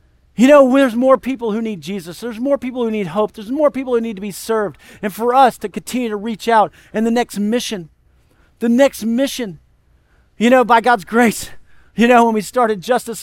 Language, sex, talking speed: English, male, 220 wpm